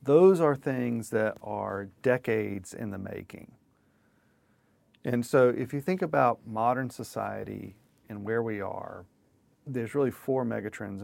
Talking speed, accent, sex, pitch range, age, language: 135 wpm, American, male, 105-125 Hz, 40-59, English